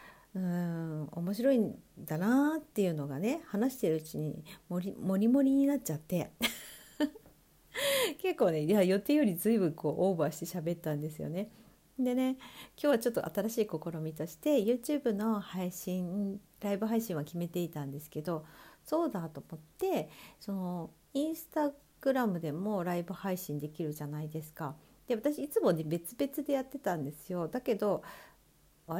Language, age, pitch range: Japanese, 50-69, 160-225 Hz